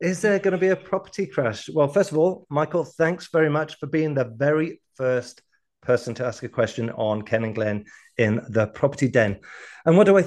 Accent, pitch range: British, 105-145 Hz